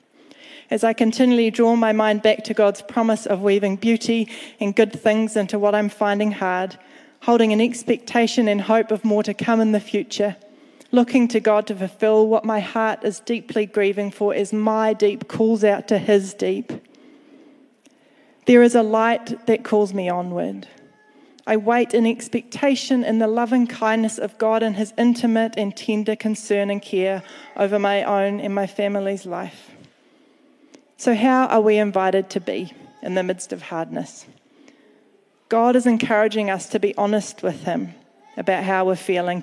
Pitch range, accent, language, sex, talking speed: 205-235 Hz, Australian, English, female, 170 wpm